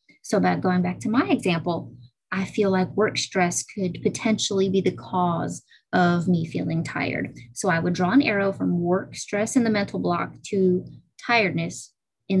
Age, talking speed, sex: 20-39, 180 wpm, female